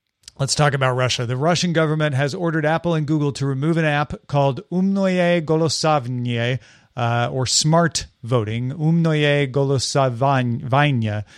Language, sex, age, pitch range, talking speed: English, male, 40-59, 125-155 Hz, 130 wpm